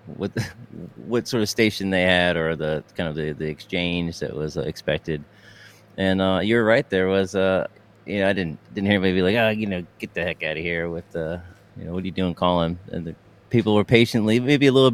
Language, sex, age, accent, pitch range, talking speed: English, male, 30-49, American, 85-105 Hz, 245 wpm